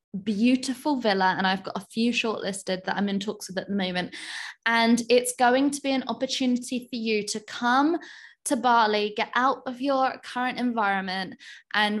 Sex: female